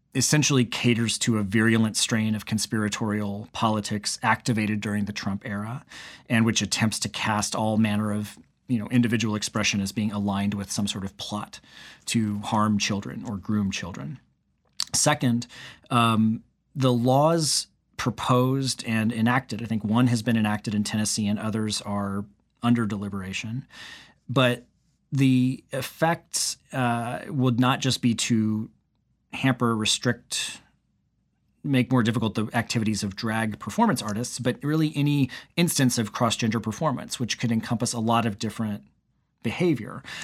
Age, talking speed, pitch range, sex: 30-49, 140 wpm, 105-125 Hz, male